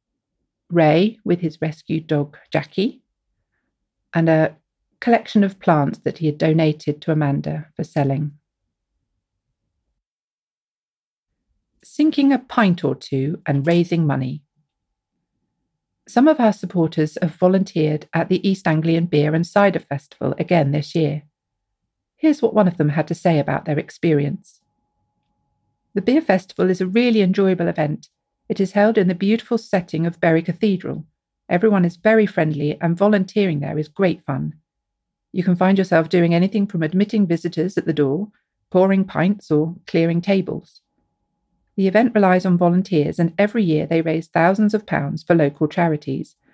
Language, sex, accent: English, female, British